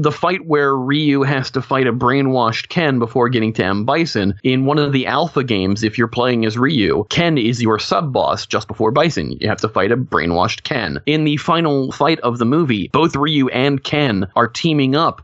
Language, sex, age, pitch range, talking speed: English, male, 30-49, 105-140 Hz, 215 wpm